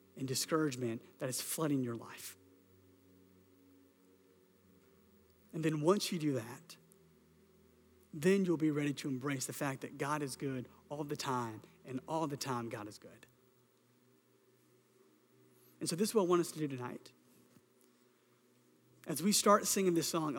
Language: English